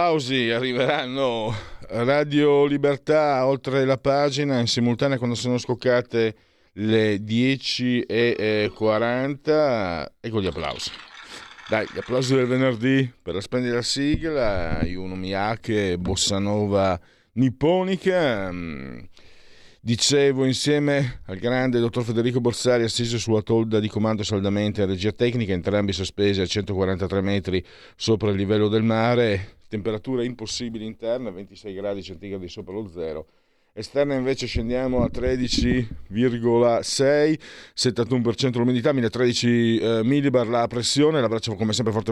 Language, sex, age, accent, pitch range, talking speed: Italian, male, 50-69, native, 100-125 Hz, 120 wpm